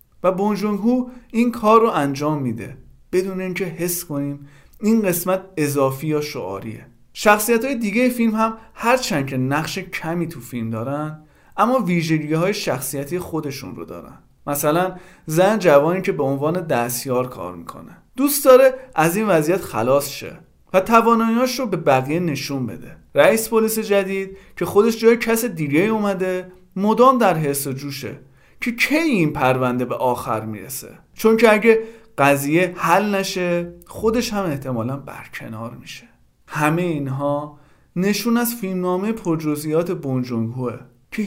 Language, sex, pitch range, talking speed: Persian, male, 135-195 Hz, 140 wpm